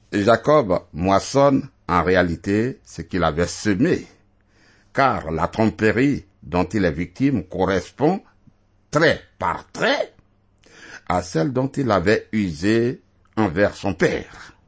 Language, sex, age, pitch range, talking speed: French, male, 60-79, 95-120 Hz, 115 wpm